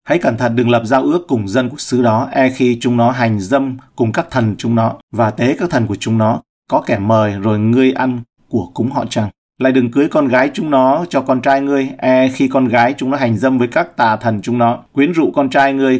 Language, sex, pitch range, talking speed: Vietnamese, male, 115-130 Hz, 265 wpm